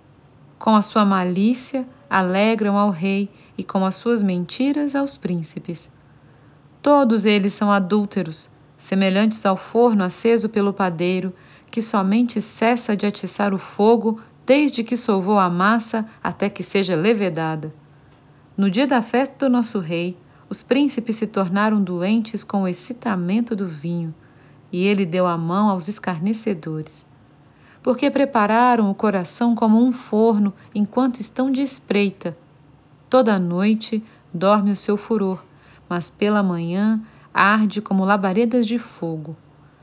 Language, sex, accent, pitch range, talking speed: Portuguese, female, Brazilian, 175-225 Hz, 135 wpm